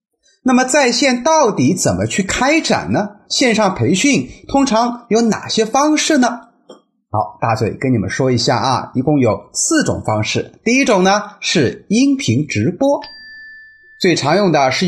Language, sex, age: Chinese, male, 30-49